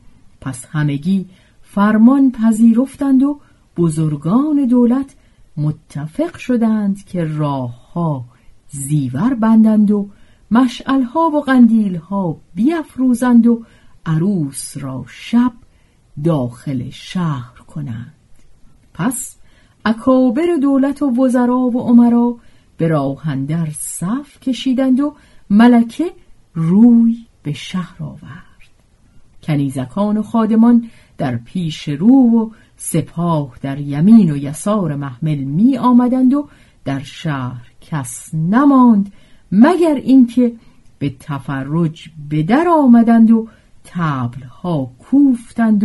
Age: 50-69